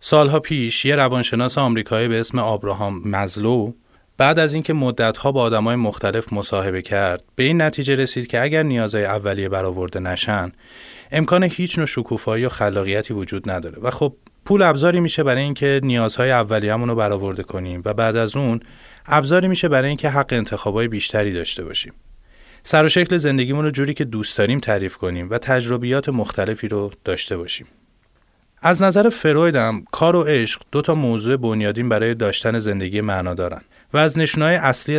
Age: 30-49